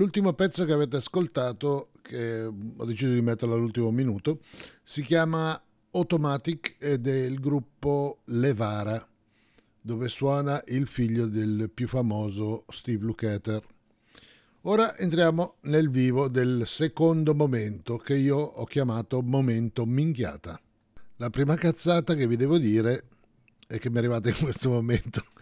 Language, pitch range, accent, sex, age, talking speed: English, 105-140 Hz, Italian, male, 50-69, 135 wpm